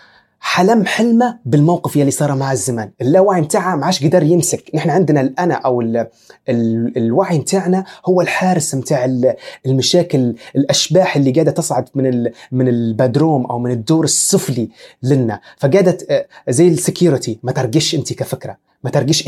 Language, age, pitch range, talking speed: Arabic, 30-49, 130-175 Hz, 135 wpm